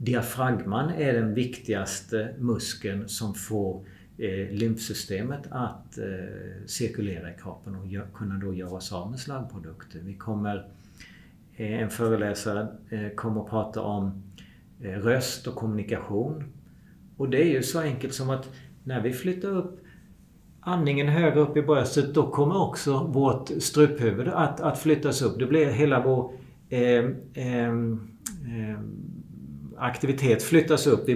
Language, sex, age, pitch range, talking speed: Swedish, male, 50-69, 110-135 Hz, 145 wpm